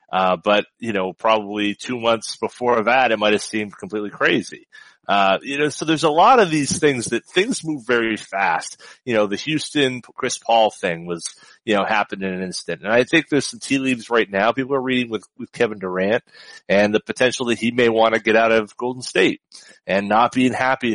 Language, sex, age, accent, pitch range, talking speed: English, male, 30-49, American, 100-130 Hz, 220 wpm